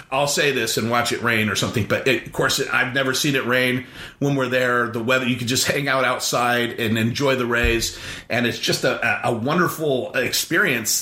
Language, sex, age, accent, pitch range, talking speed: English, male, 40-59, American, 120-150 Hz, 210 wpm